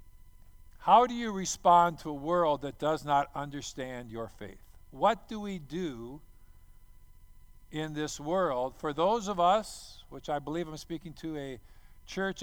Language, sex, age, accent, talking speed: English, male, 50-69, American, 155 wpm